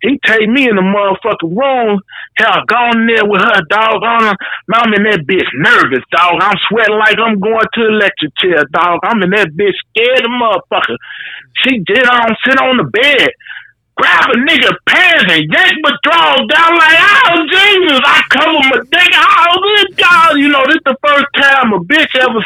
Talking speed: 190 wpm